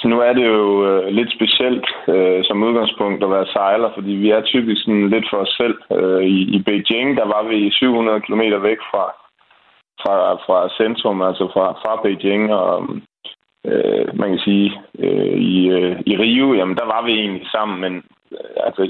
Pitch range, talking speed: 95-110 Hz, 185 wpm